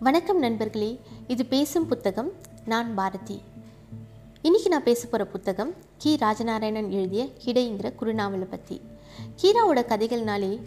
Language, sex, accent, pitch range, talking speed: Tamil, female, native, 195-250 Hz, 110 wpm